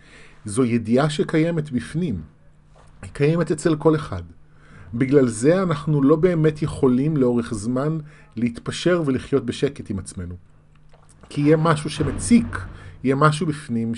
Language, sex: Hebrew, male